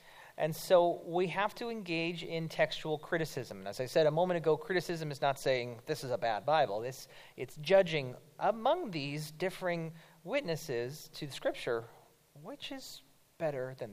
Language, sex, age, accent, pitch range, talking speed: English, male, 40-59, American, 145-180 Hz, 170 wpm